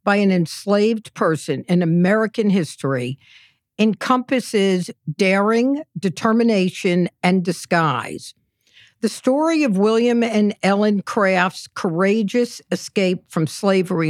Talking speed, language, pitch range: 100 wpm, English, 170-220 Hz